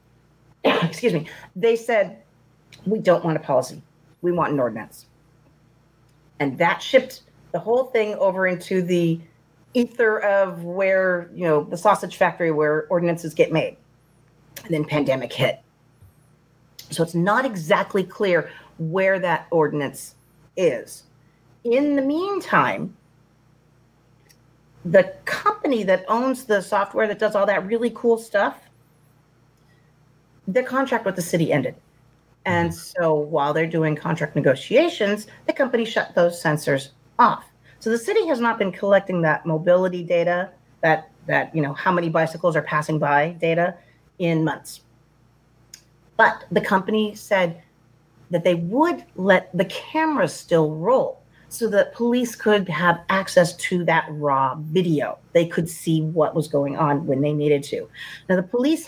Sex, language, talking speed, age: female, English, 145 wpm, 40-59